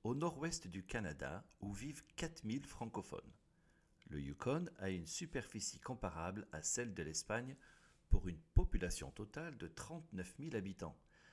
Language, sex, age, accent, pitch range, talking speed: French, male, 60-79, French, 90-125 Hz, 140 wpm